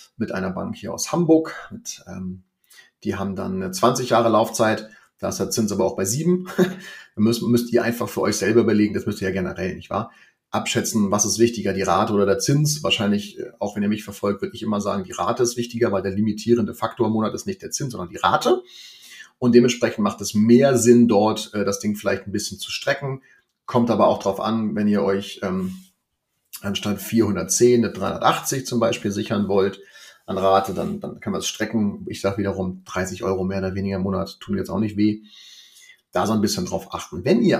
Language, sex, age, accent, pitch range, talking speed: German, male, 30-49, German, 100-120 Hz, 215 wpm